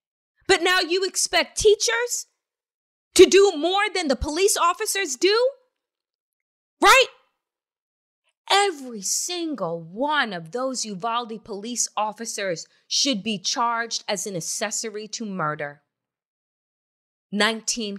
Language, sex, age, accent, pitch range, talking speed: English, female, 30-49, American, 205-335 Hz, 105 wpm